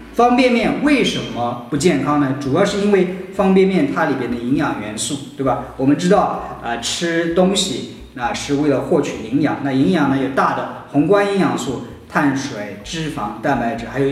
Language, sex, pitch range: Chinese, male, 125-170 Hz